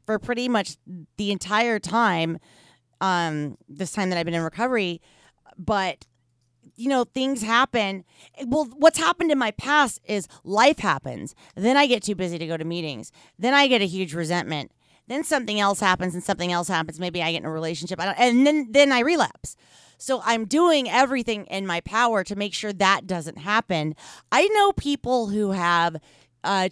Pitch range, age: 150-210 Hz, 30-49